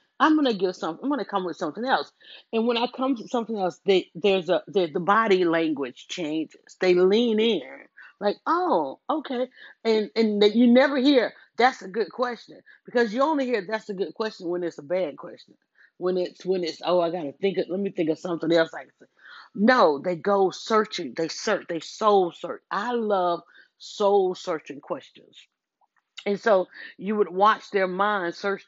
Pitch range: 170-215 Hz